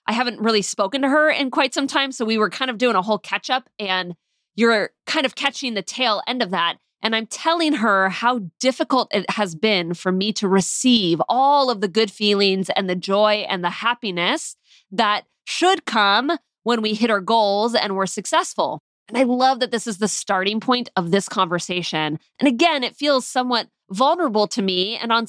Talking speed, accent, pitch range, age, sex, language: 205 wpm, American, 195-255 Hz, 20-39, female, English